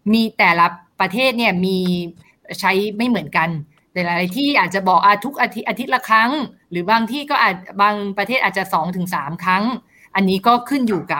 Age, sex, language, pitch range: 20-39, female, Thai, 180-230 Hz